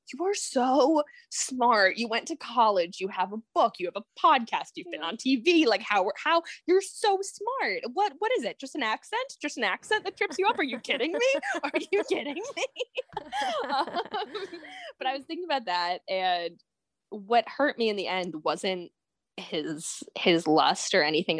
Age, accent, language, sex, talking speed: 10-29, American, English, female, 190 wpm